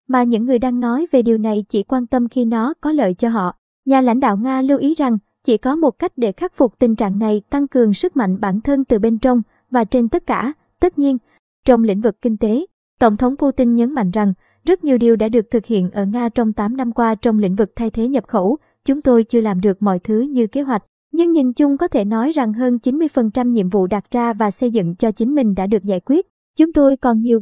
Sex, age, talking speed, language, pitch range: male, 20-39, 255 wpm, Vietnamese, 220-265 Hz